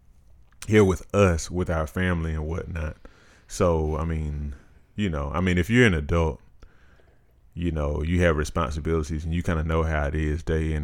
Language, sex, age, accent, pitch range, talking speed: English, male, 30-49, American, 75-90 Hz, 190 wpm